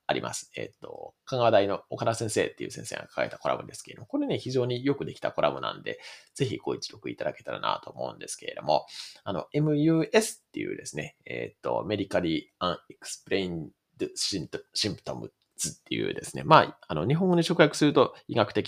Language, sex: Japanese, male